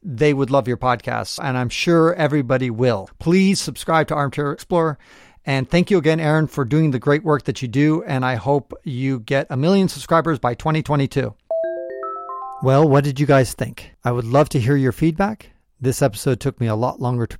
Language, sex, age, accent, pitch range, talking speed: English, male, 40-59, American, 120-160 Hz, 205 wpm